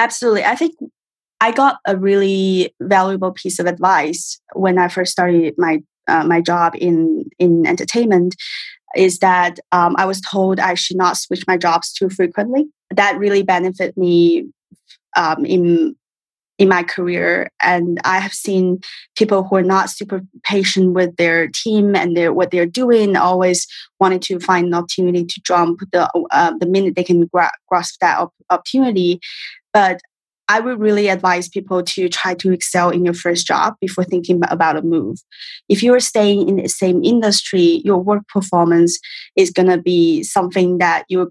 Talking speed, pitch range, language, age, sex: 170 wpm, 175-200 Hz, English, 20-39, female